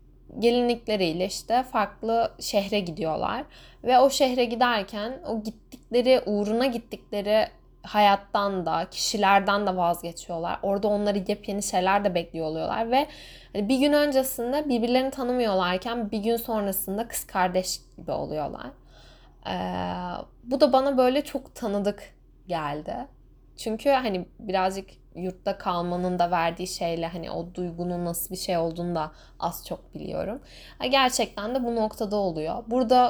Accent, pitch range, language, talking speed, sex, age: native, 180-235 Hz, Turkish, 130 wpm, female, 10-29